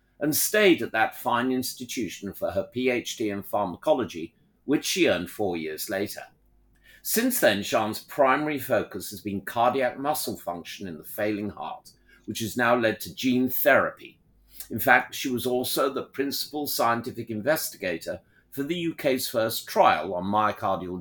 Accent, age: British, 50-69